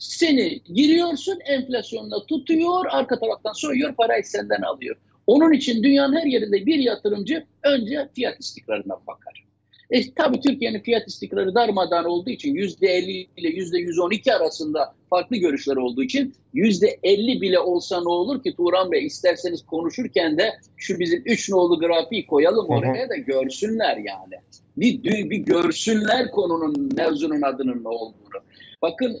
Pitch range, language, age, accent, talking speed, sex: 180-295 Hz, Turkish, 60-79, native, 135 wpm, male